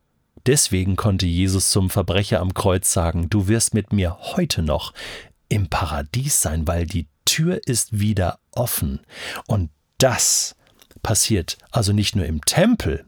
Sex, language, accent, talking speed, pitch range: male, German, German, 140 wpm, 90-125 Hz